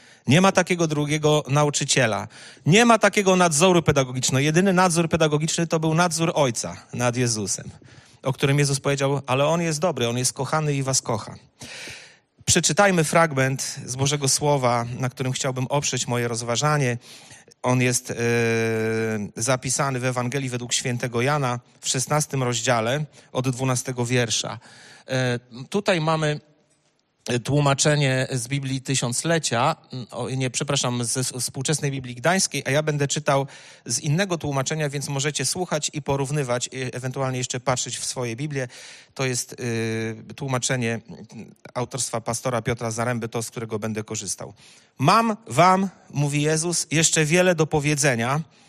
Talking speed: 135 wpm